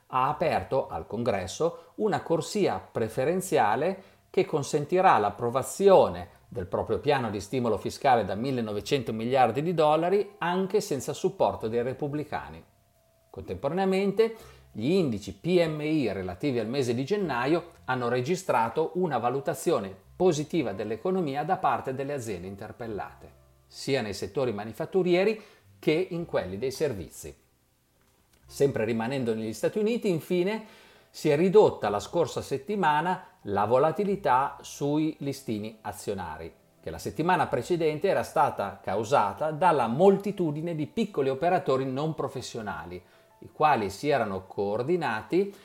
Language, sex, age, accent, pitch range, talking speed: Italian, male, 50-69, native, 115-185 Hz, 120 wpm